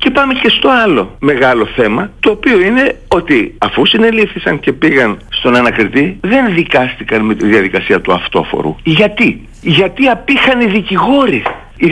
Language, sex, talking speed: Greek, male, 150 wpm